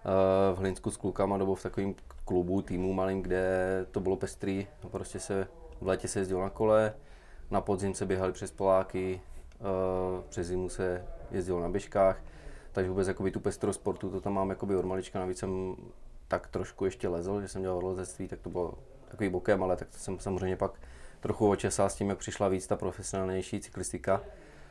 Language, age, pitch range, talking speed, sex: Czech, 20-39, 90-100 Hz, 180 wpm, male